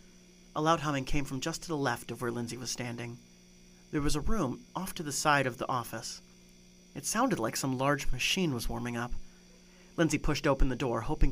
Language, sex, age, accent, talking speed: English, male, 30-49, American, 210 wpm